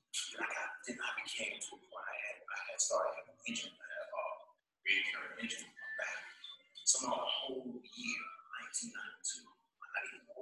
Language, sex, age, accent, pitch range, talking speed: English, male, 40-59, American, 280-455 Hz, 150 wpm